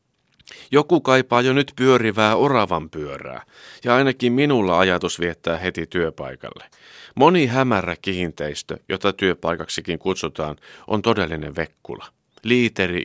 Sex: male